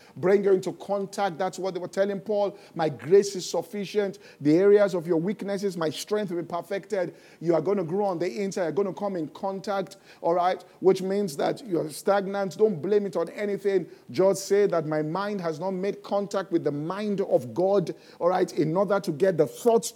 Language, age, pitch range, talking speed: English, 50-69, 170-205 Hz, 225 wpm